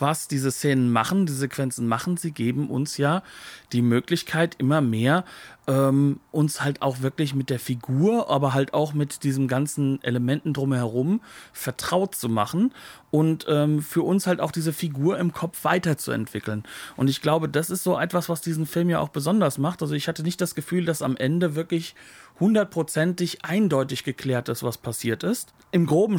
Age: 40-59